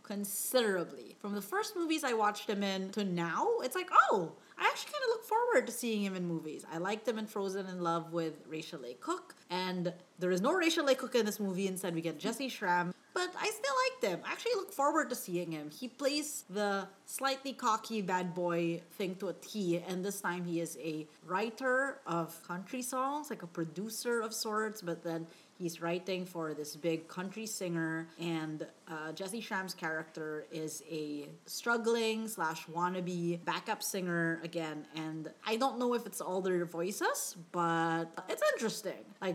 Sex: female